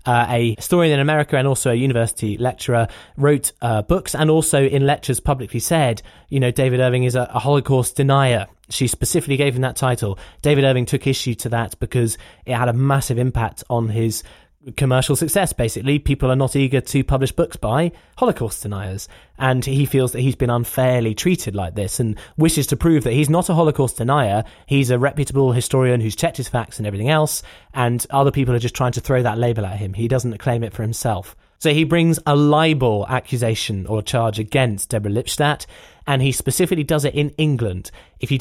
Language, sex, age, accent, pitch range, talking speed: English, male, 20-39, British, 115-140 Hz, 200 wpm